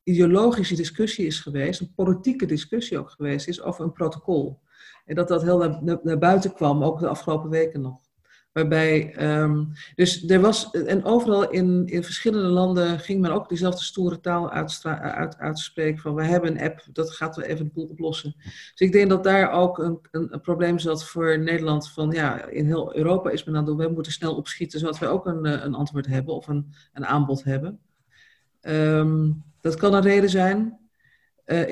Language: Dutch